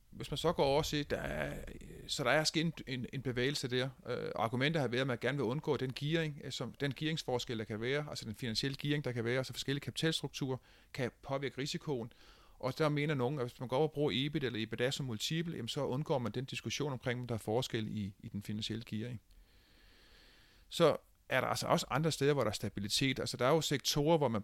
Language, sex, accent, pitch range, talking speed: Danish, male, native, 115-145 Hz, 245 wpm